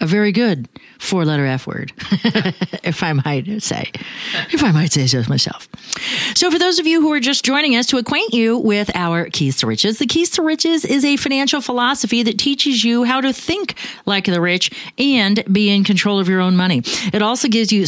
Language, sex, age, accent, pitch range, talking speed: English, female, 40-59, American, 170-245 Hz, 210 wpm